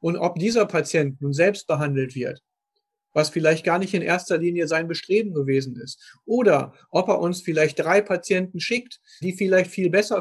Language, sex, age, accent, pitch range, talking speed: German, male, 40-59, German, 150-180 Hz, 180 wpm